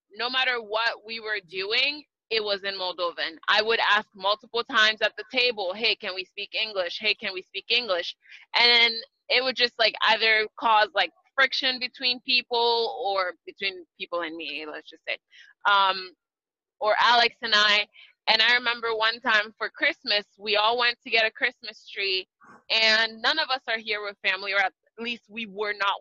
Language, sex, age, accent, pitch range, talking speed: English, female, 20-39, American, 205-255 Hz, 185 wpm